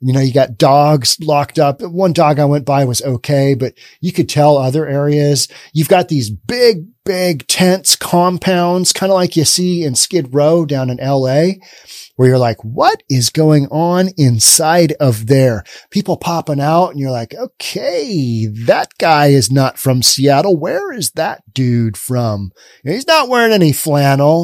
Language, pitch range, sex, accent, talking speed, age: English, 130-170 Hz, male, American, 180 wpm, 40-59